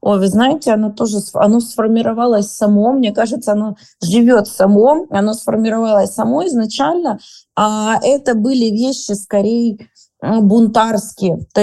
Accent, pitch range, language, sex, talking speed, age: native, 205-250 Hz, Russian, female, 115 wpm, 20-39